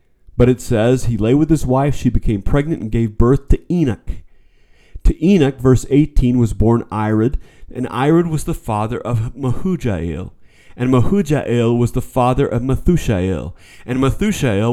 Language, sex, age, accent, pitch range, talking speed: English, male, 30-49, American, 105-140 Hz, 160 wpm